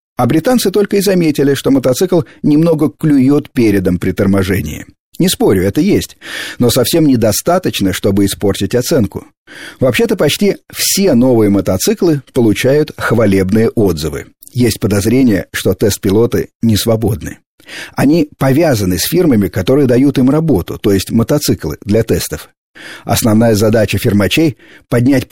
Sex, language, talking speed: male, Russian, 125 wpm